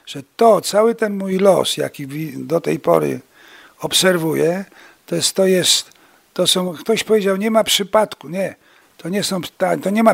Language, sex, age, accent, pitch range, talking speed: Polish, male, 50-69, native, 160-200 Hz, 170 wpm